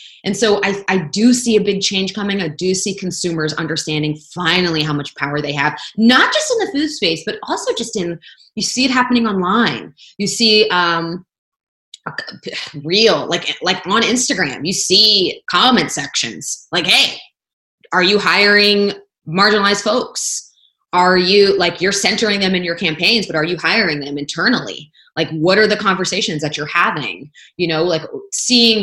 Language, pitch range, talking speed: English, 165-210 Hz, 170 wpm